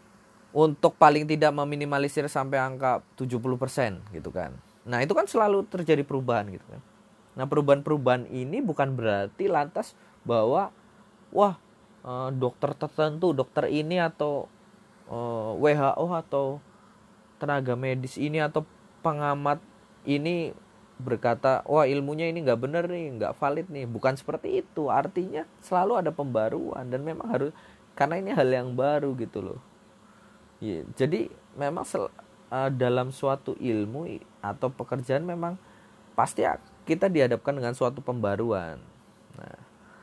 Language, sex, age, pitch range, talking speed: Indonesian, male, 20-39, 125-165 Hz, 125 wpm